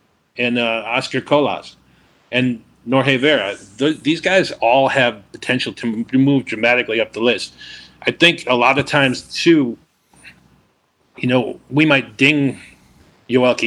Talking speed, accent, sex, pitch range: 145 wpm, American, male, 110-140 Hz